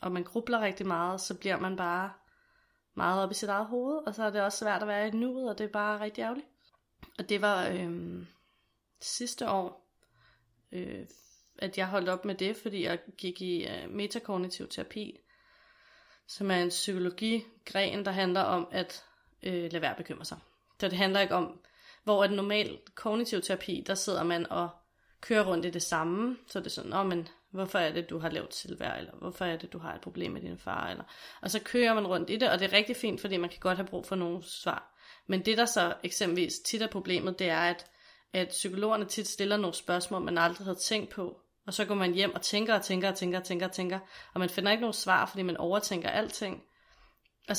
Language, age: Danish, 20-39